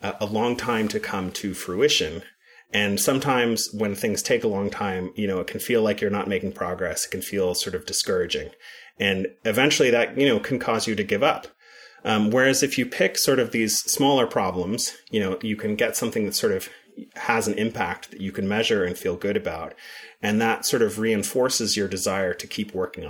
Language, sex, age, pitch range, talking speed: English, male, 30-49, 100-140 Hz, 215 wpm